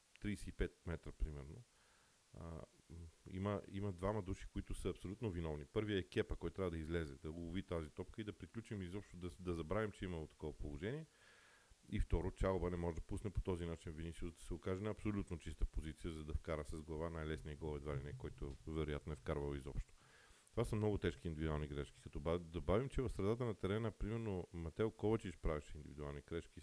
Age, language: 40-59, Bulgarian